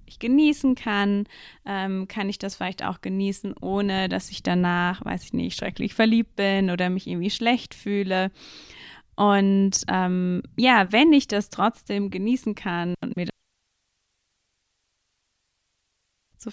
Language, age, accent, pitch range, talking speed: German, 20-39, German, 185-220 Hz, 140 wpm